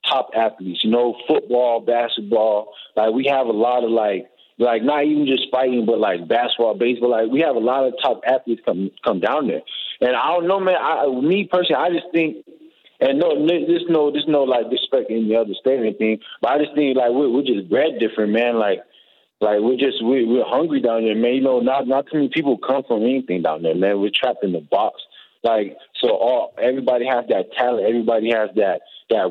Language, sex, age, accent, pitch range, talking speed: English, male, 20-39, American, 110-140 Hz, 235 wpm